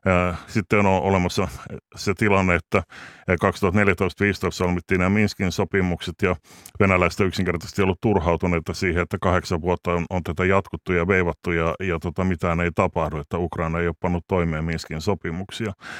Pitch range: 85-100 Hz